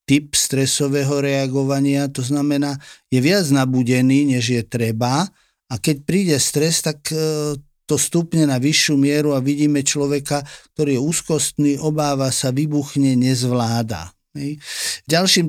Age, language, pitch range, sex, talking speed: 50-69, Slovak, 125-150 Hz, male, 125 wpm